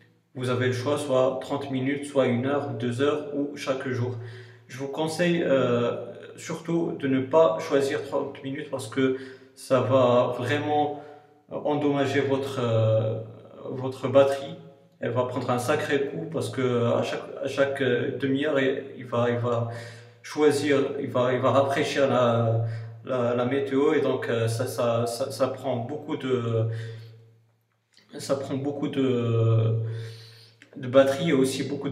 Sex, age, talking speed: male, 40-59, 155 wpm